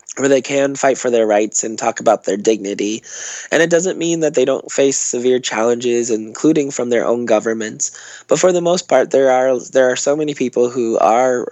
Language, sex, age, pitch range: English, male, 20-39, 115-130 Hz